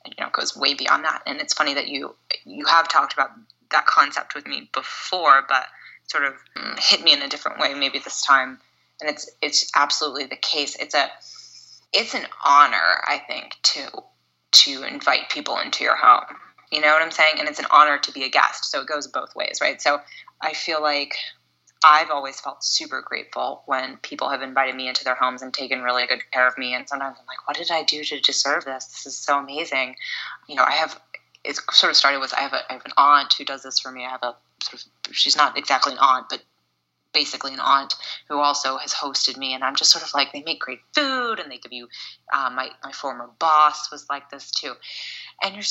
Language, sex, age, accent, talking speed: English, female, 20-39, American, 230 wpm